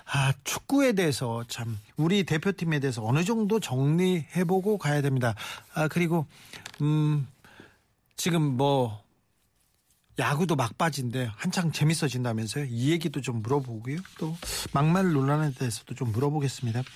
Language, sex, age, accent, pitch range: Korean, male, 40-59, native, 130-165 Hz